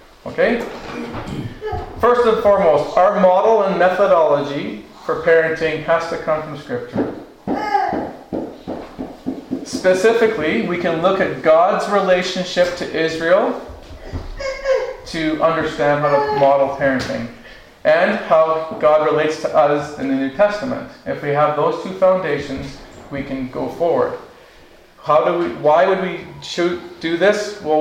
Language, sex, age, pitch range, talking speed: English, male, 40-59, 150-200 Hz, 125 wpm